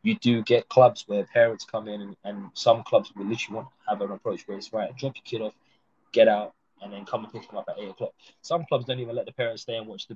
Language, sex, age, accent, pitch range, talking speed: English, male, 20-39, British, 105-130 Hz, 290 wpm